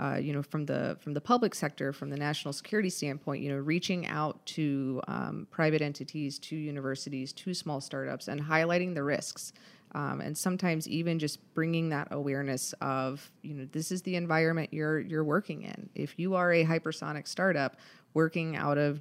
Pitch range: 145-165 Hz